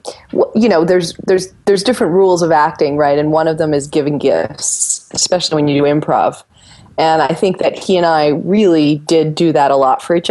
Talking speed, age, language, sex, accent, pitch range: 215 wpm, 30-49, English, female, American, 145-185 Hz